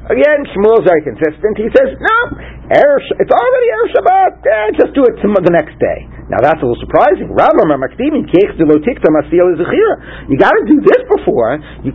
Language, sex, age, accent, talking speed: English, male, 50-69, American, 150 wpm